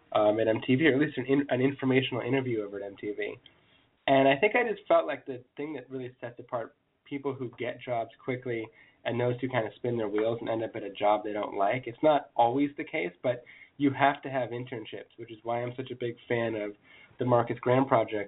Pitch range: 110-130 Hz